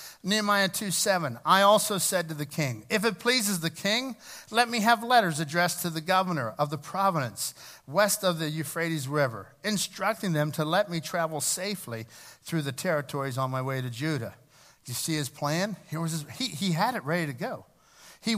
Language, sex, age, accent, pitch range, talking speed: English, male, 50-69, American, 150-210 Hz, 195 wpm